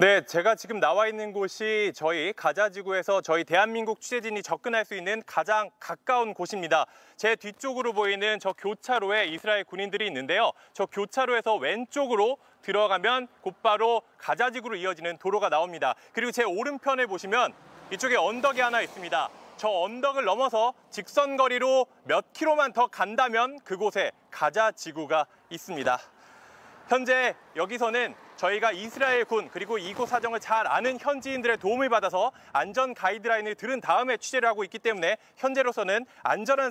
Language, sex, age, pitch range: Korean, male, 30-49, 195-245 Hz